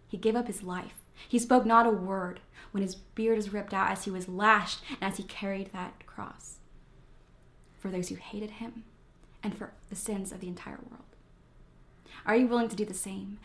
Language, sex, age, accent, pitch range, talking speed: English, female, 20-39, American, 195-235 Hz, 205 wpm